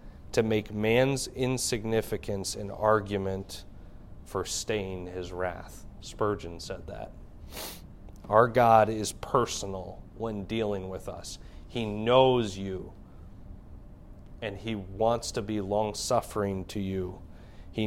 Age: 30-49